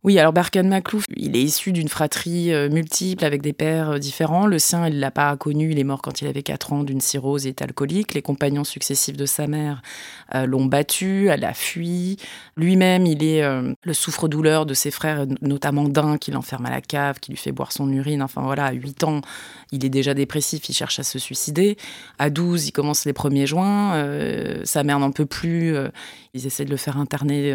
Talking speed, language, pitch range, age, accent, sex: 215 wpm, French, 135-165 Hz, 20-39, French, female